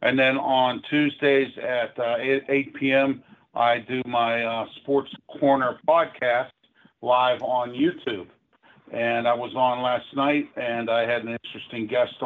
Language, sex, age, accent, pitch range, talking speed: English, male, 50-69, American, 120-135 Hz, 150 wpm